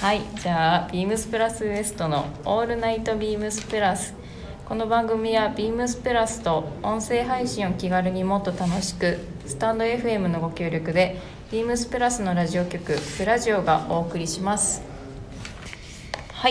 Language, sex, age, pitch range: Japanese, female, 20-39, 175-225 Hz